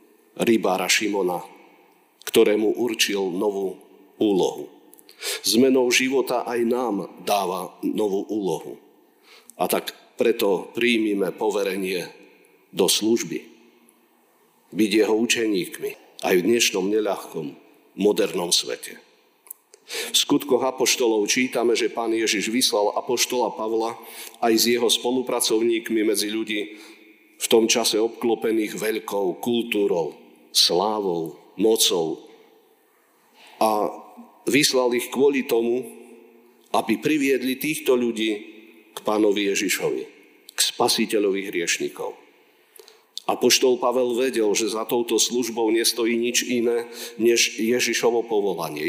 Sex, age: male, 50-69